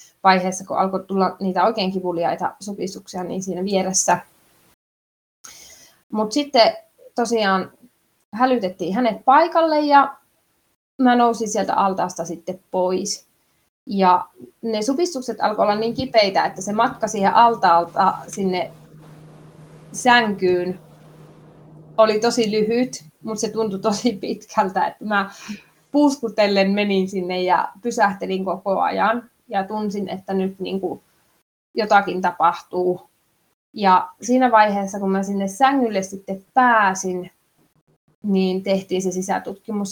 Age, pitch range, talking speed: 20-39, 185-220 Hz, 115 wpm